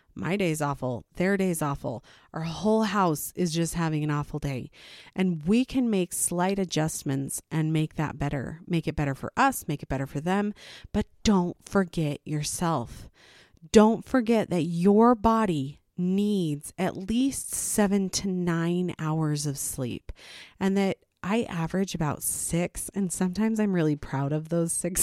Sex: female